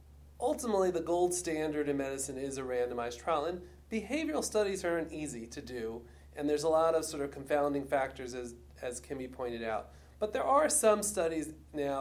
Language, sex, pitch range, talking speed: English, male, 125-150 Hz, 185 wpm